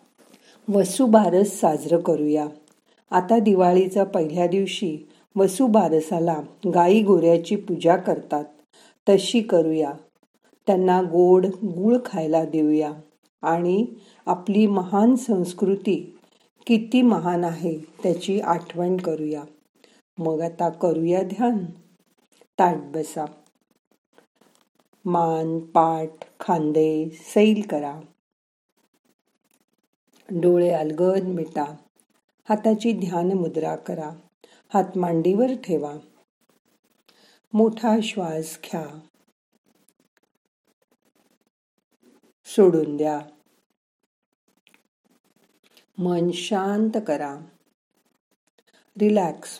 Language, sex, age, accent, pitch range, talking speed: Marathi, female, 50-69, native, 160-205 Hz, 70 wpm